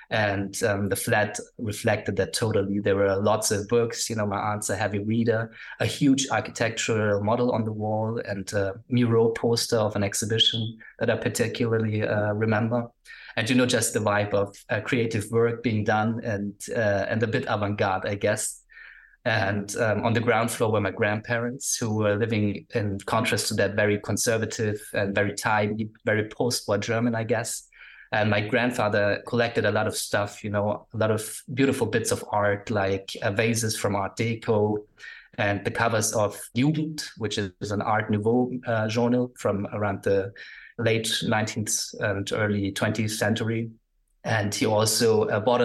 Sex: male